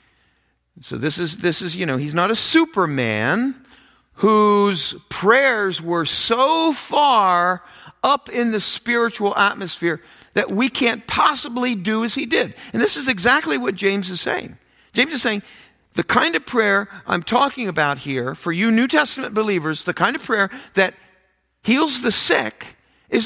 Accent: American